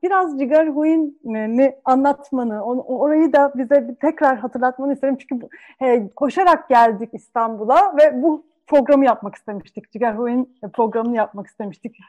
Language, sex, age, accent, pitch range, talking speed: Turkish, female, 40-59, native, 240-320 Hz, 130 wpm